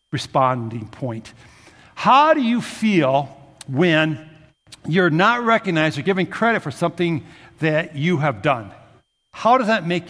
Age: 60-79